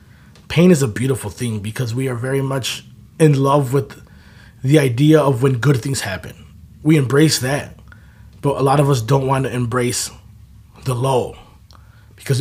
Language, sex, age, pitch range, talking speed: English, male, 20-39, 115-145 Hz, 170 wpm